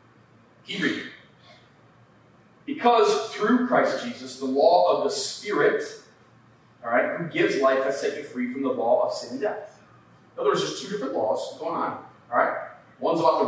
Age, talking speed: 30-49, 180 wpm